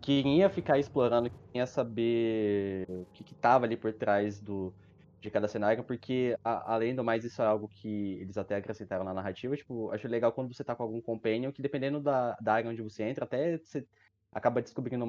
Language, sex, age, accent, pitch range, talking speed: Portuguese, male, 20-39, Brazilian, 105-130 Hz, 210 wpm